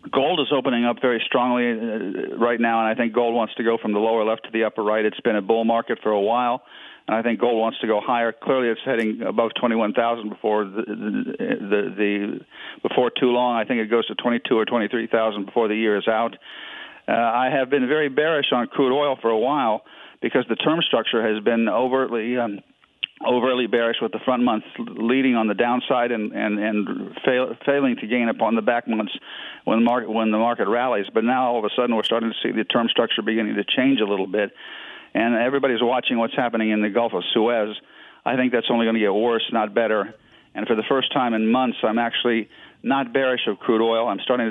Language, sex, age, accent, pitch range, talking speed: English, male, 50-69, American, 110-120 Hz, 220 wpm